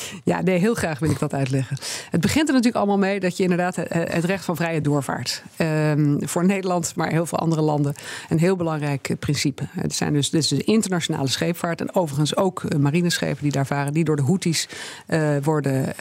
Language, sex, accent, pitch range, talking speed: Dutch, female, Dutch, 145-175 Hz, 210 wpm